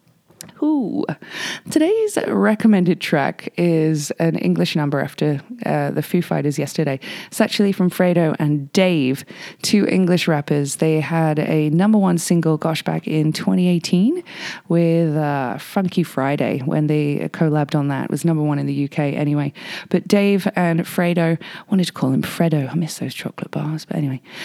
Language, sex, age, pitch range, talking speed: English, female, 20-39, 155-190 Hz, 165 wpm